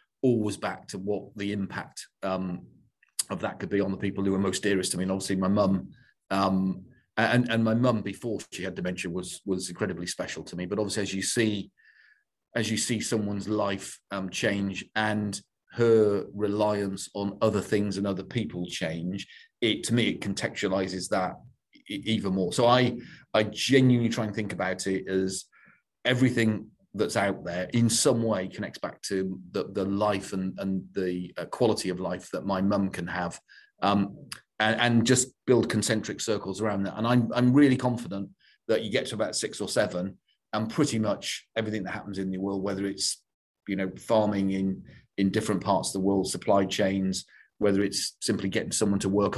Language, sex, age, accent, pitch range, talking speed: English, male, 40-59, British, 95-110 Hz, 185 wpm